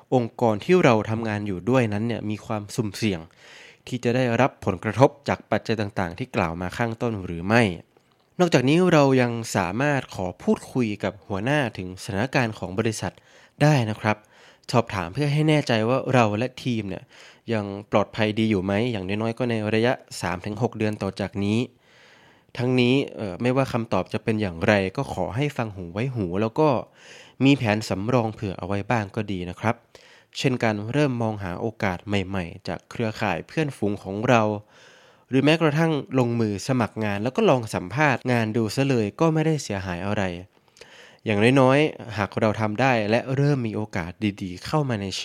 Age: 20-39